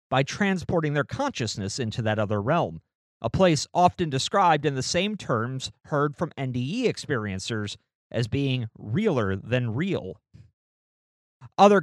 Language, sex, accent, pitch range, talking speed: English, male, American, 125-185 Hz, 130 wpm